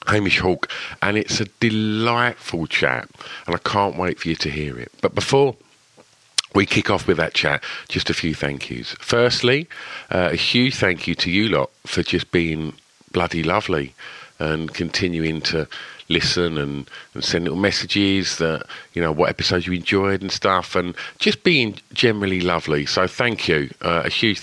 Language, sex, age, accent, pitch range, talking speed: English, male, 50-69, British, 80-100 Hz, 175 wpm